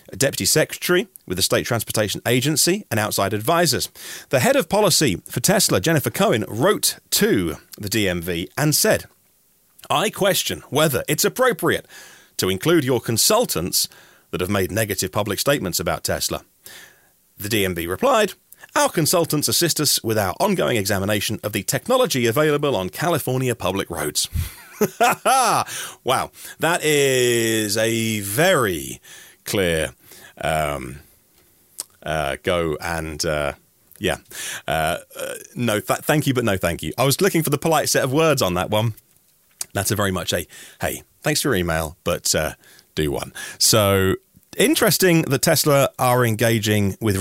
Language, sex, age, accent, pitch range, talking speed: English, male, 40-59, British, 95-145 Hz, 145 wpm